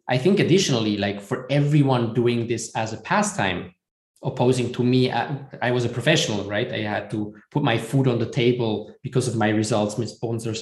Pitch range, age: 110-140 Hz, 20-39